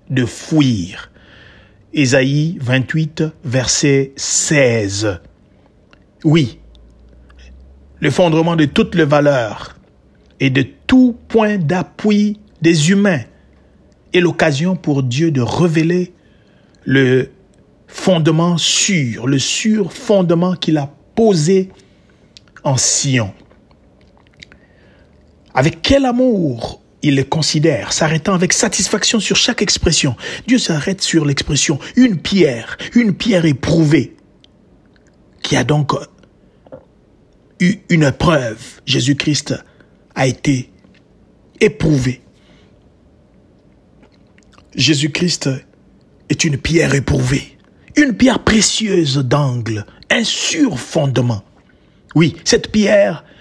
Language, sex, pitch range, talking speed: French, male, 135-185 Hz, 95 wpm